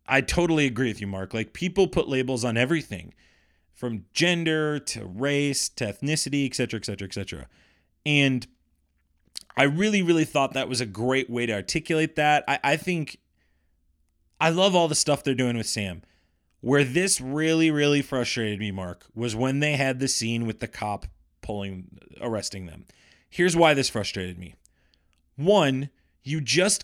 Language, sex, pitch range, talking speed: English, male, 95-150 Hz, 170 wpm